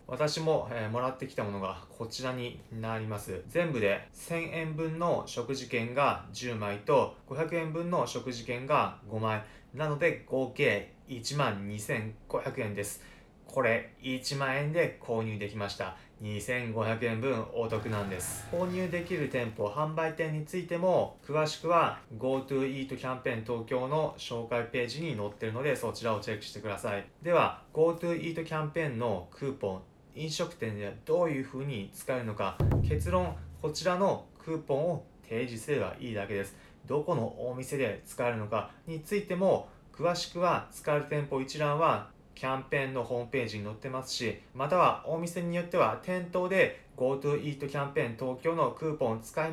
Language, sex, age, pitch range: Japanese, male, 20-39, 115-160 Hz